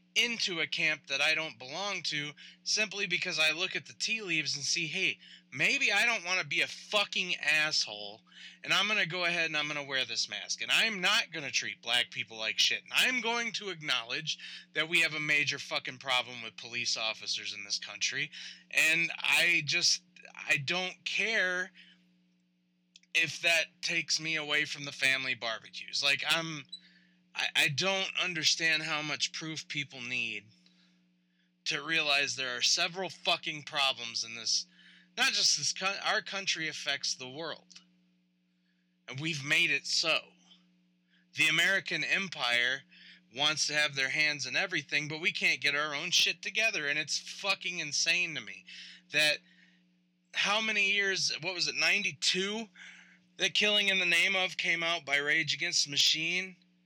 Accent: American